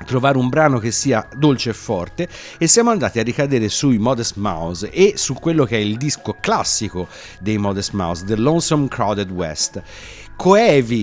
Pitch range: 100-130 Hz